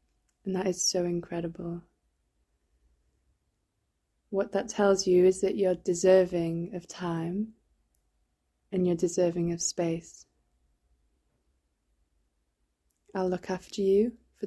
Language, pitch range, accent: English, 170-195 Hz, British